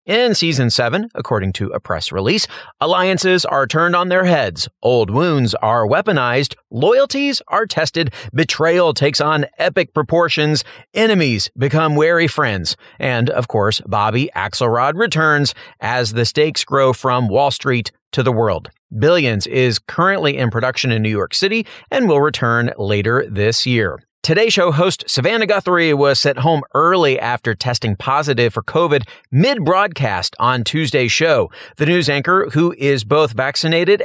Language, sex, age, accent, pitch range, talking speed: English, male, 30-49, American, 120-170 Hz, 150 wpm